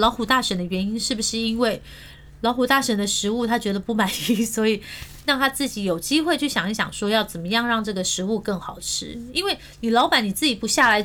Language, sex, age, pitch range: Chinese, female, 20-39, 210-275 Hz